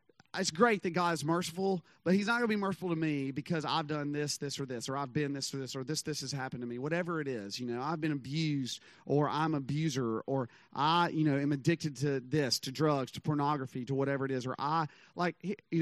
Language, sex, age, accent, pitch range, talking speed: English, male, 30-49, American, 130-165 Hz, 255 wpm